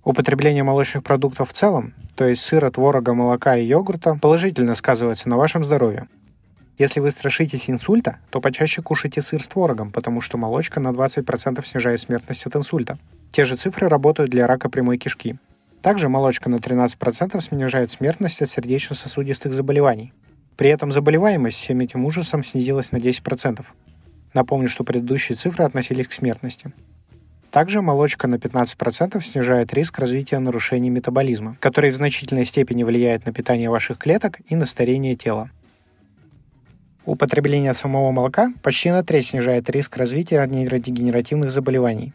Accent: native